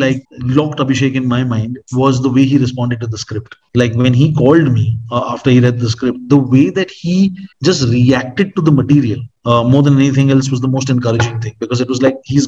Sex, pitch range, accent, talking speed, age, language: male, 120-140 Hz, Indian, 235 wpm, 30-49, English